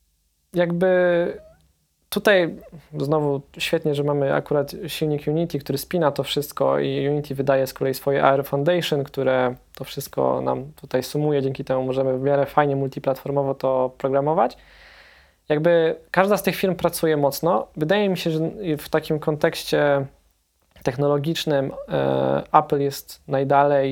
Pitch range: 135-155 Hz